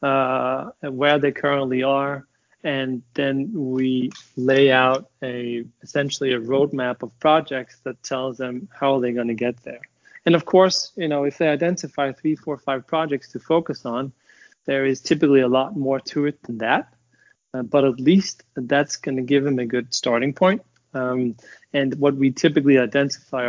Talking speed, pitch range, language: 175 wpm, 125-145 Hz, English